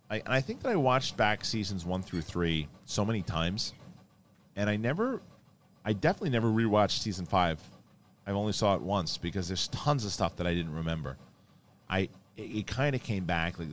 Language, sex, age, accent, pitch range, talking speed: English, male, 40-59, American, 85-115 Hz, 190 wpm